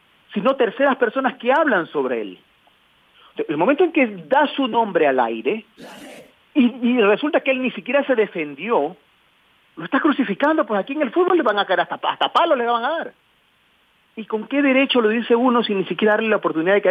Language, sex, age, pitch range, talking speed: Spanish, male, 40-59, 195-260 Hz, 210 wpm